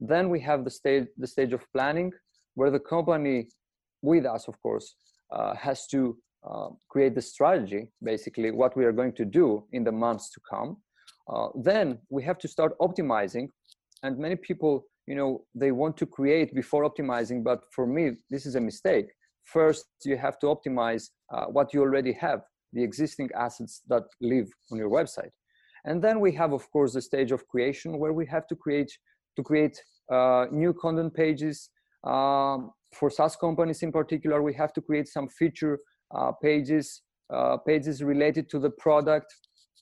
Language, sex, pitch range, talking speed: English, male, 130-155 Hz, 180 wpm